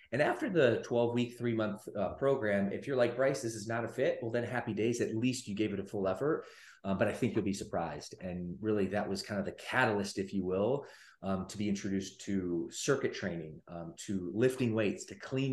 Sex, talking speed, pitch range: male, 235 wpm, 100-115 Hz